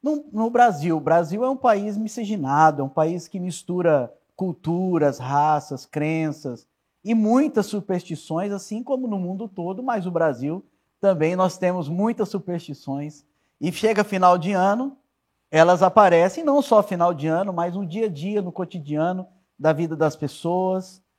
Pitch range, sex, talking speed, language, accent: 155-215 Hz, male, 160 wpm, Portuguese, Brazilian